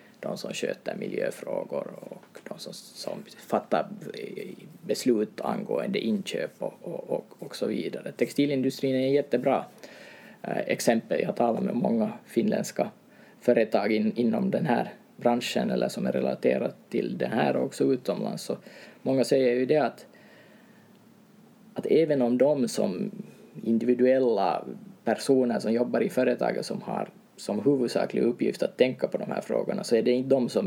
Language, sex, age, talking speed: Swedish, male, 20-39, 150 wpm